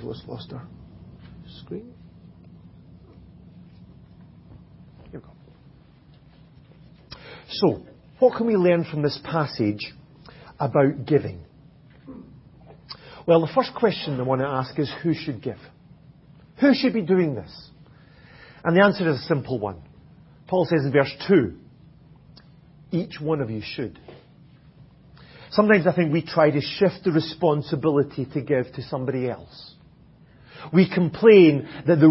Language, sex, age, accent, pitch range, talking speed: English, male, 40-59, British, 145-180 Hz, 115 wpm